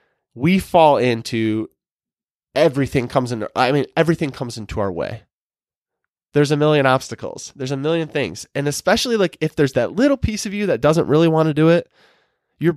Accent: American